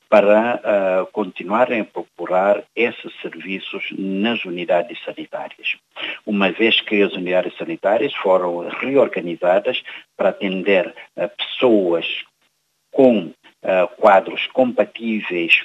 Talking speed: 90 wpm